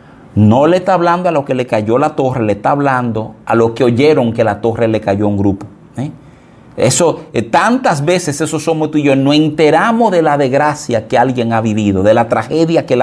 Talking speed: 230 wpm